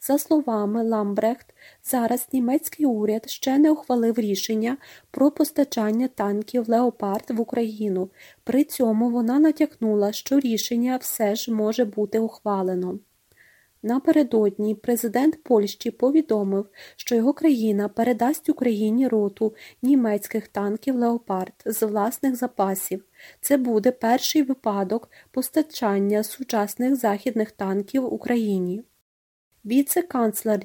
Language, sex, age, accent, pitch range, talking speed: Ukrainian, female, 30-49, native, 205-255 Hz, 105 wpm